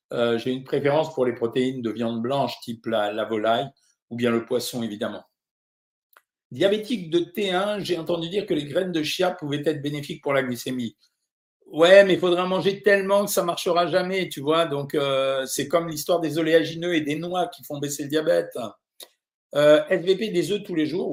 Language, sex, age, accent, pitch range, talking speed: French, male, 50-69, French, 130-185 Hz, 200 wpm